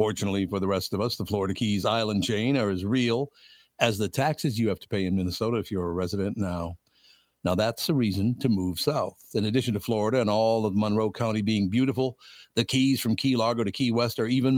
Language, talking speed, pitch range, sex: English, 230 wpm, 105-135 Hz, male